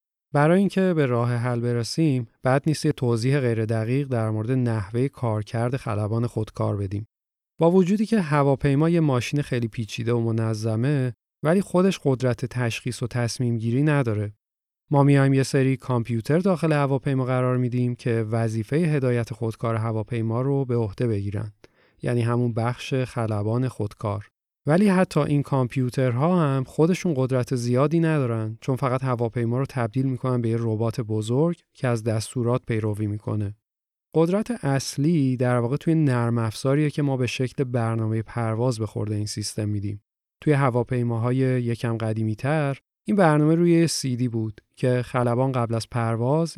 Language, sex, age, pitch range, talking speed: Persian, male, 30-49, 115-140 Hz, 150 wpm